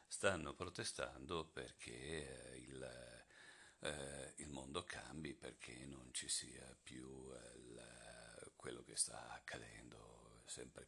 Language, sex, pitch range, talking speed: Italian, male, 70-85 Hz, 95 wpm